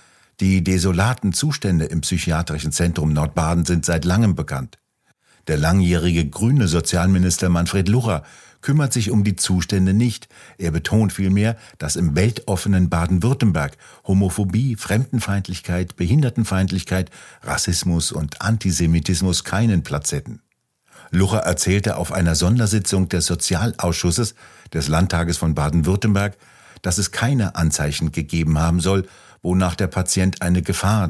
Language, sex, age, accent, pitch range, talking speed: German, male, 50-69, German, 85-100 Hz, 120 wpm